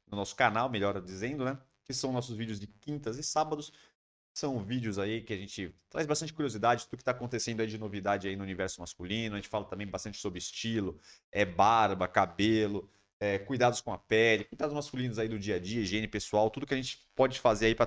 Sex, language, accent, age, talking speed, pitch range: male, Portuguese, Brazilian, 30-49, 220 wpm, 105-130 Hz